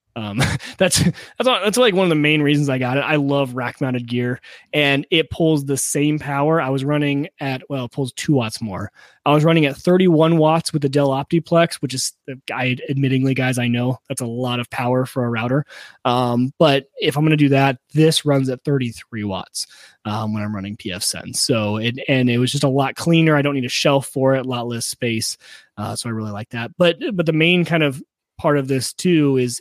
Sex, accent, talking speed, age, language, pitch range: male, American, 235 wpm, 20-39, English, 120-155 Hz